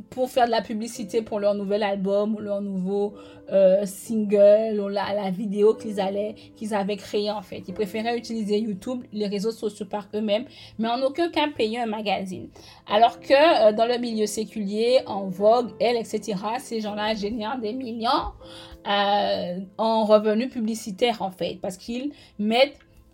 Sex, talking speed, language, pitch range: female, 170 wpm, French, 210-255 Hz